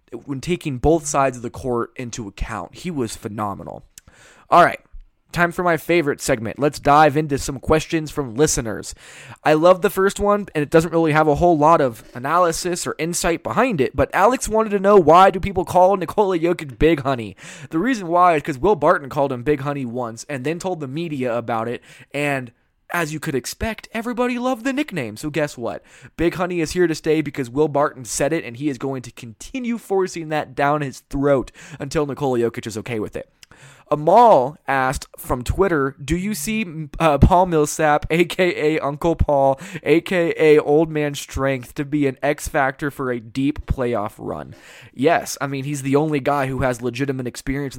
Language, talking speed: English, 195 wpm